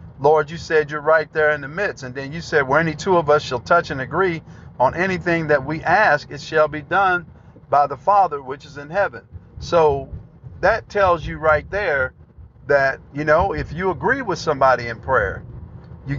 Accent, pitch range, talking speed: American, 130-170 Hz, 205 wpm